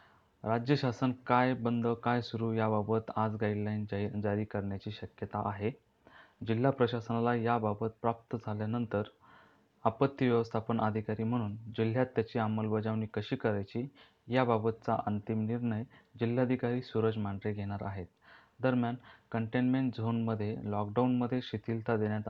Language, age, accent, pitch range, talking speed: Marathi, 30-49, native, 110-120 Hz, 115 wpm